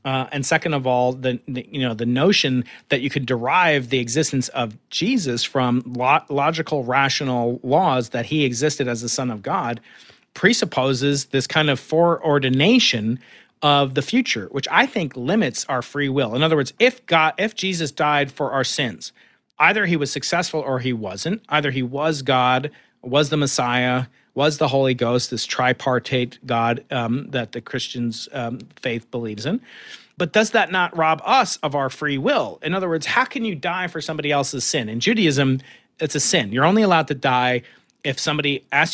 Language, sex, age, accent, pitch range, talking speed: English, male, 40-59, American, 125-160 Hz, 185 wpm